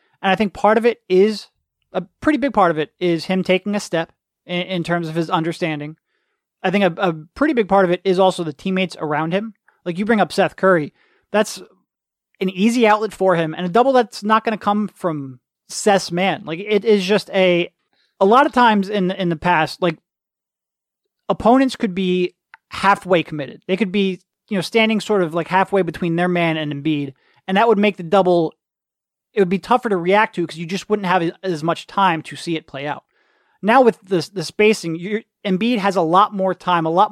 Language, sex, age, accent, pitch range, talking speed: English, male, 30-49, American, 170-205 Hz, 220 wpm